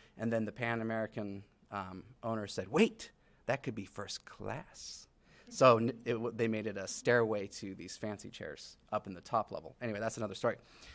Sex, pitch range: male, 105-135 Hz